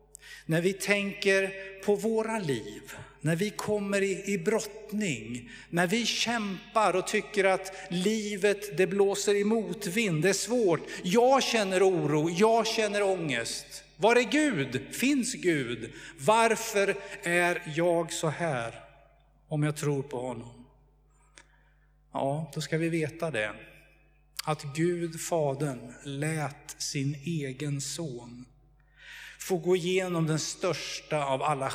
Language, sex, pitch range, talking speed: Swedish, male, 145-200 Hz, 125 wpm